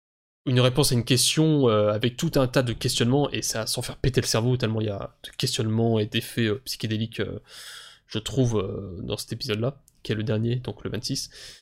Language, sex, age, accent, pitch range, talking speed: French, male, 20-39, French, 115-140 Hz, 215 wpm